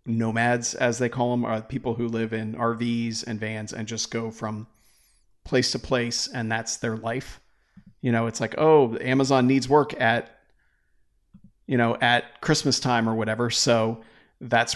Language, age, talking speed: English, 40-59, 170 wpm